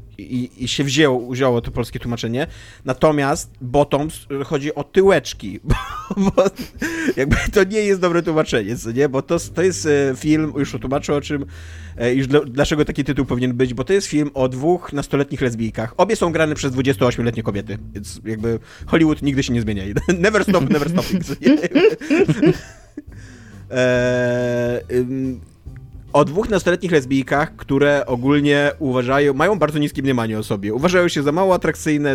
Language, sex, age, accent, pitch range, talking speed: Polish, male, 30-49, native, 125-160 Hz, 150 wpm